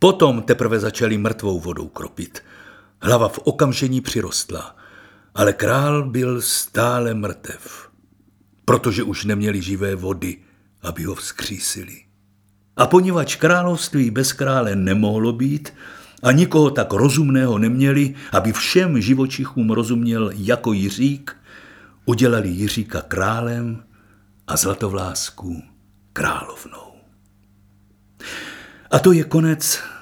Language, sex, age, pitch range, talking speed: Czech, male, 50-69, 100-130 Hz, 100 wpm